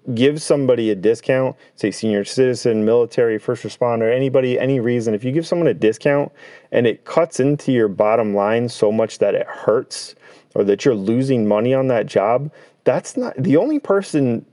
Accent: American